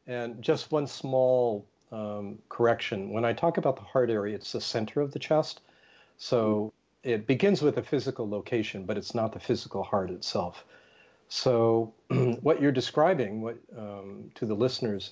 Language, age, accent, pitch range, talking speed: English, 50-69, American, 110-135 Hz, 165 wpm